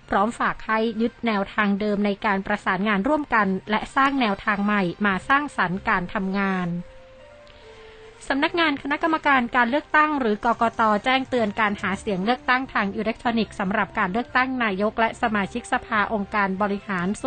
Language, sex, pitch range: Thai, female, 200-240 Hz